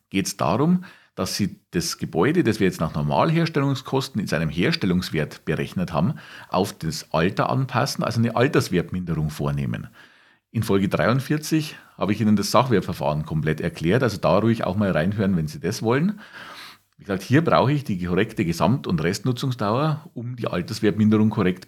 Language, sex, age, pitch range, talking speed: German, male, 50-69, 105-155 Hz, 165 wpm